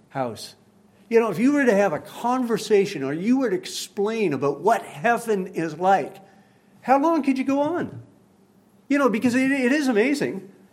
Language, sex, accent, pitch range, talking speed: English, male, American, 180-265 Hz, 185 wpm